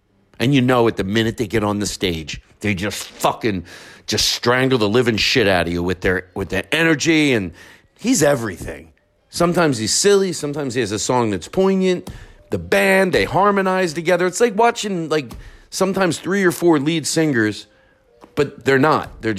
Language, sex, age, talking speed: English, male, 50-69, 185 wpm